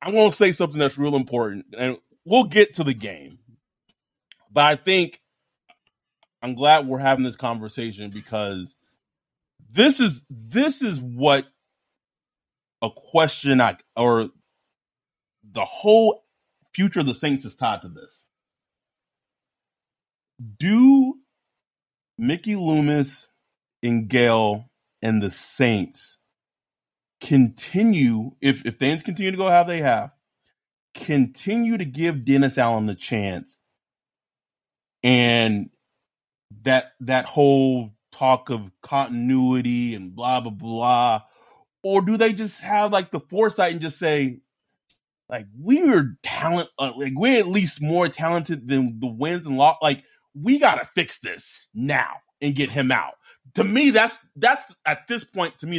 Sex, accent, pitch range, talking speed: male, American, 125-185 Hz, 135 wpm